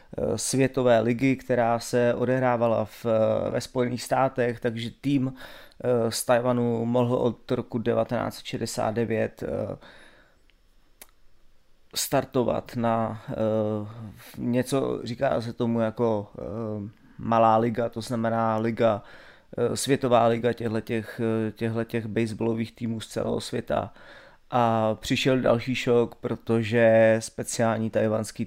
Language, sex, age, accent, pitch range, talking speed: Czech, male, 30-49, native, 110-125 Hz, 95 wpm